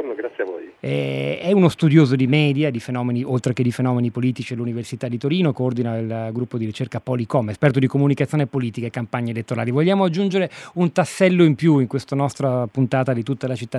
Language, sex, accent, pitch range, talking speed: Italian, male, native, 120-145 Hz, 185 wpm